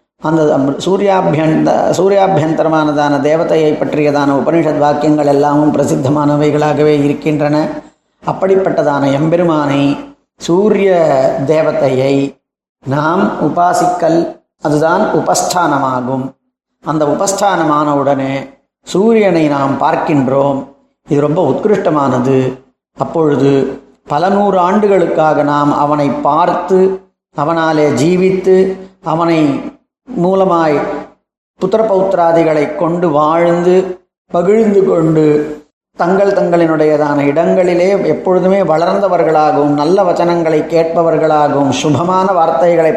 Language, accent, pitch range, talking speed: Tamil, native, 150-185 Hz, 75 wpm